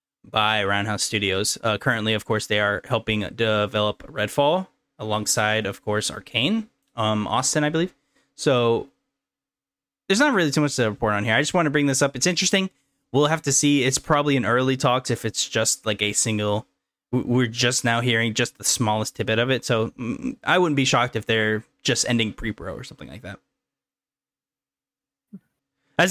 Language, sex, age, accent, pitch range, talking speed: English, male, 10-29, American, 110-150 Hz, 180 wpm